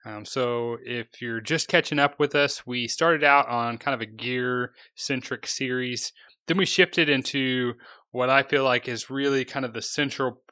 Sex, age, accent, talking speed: male, 20-39, American, 190 wpm